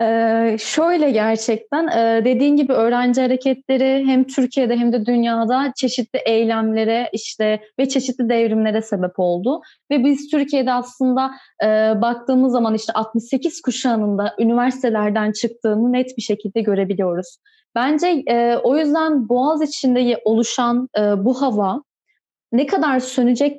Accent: native